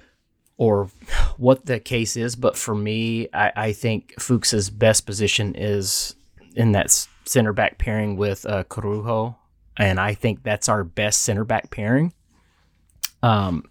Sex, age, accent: male, 30-49, American